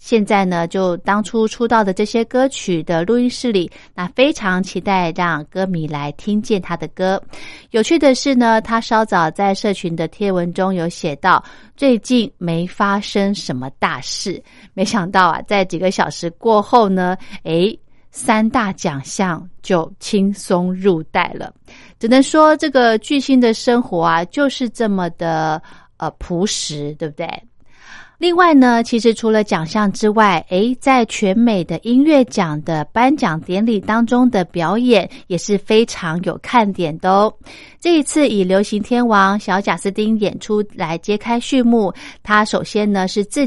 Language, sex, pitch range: Chinese, female, 175-230 Hz